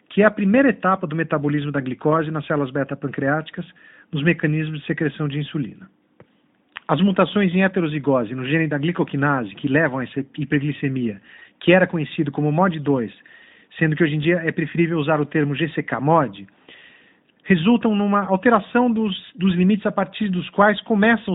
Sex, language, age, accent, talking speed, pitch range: male, Portuguese, 50-69, Brazilian, 160 wpm, 150-185 Hz